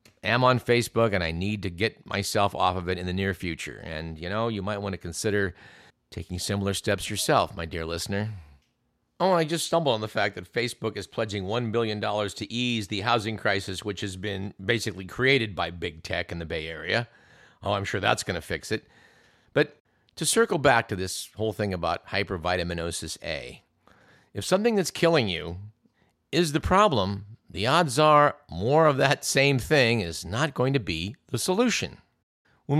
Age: 50-69